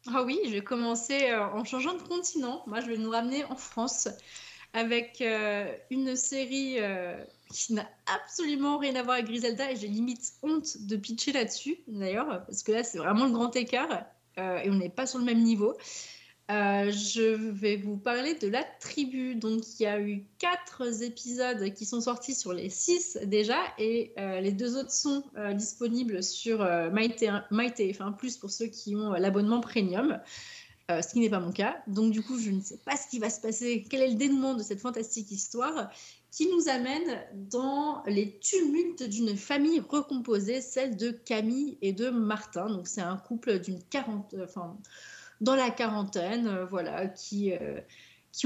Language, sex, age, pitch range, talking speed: French, female, 30-49, 205-255 Hz, 185 wpm